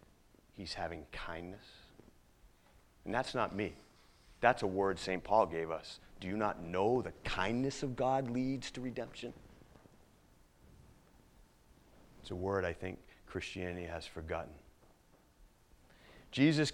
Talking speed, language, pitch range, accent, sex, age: 120 wpm, English, 85-110 Hz, American, male, 40-59